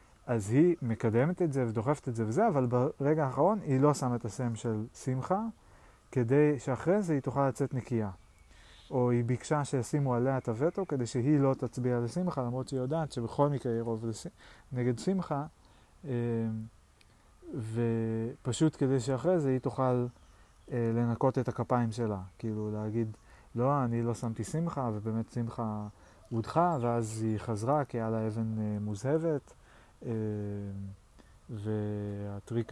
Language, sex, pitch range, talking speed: Hebrew, male, 110-140 Hz, 140 wpm